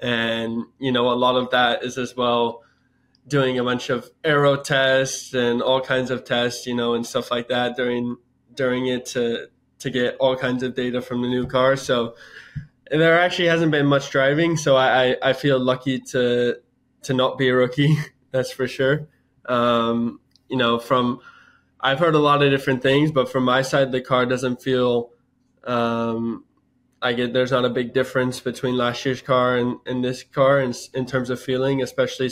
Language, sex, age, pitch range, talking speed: English, male, 10-29, 120-130 Hz, 195 wpm